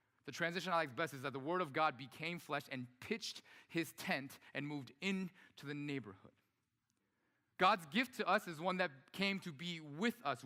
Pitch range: 115-165 Hz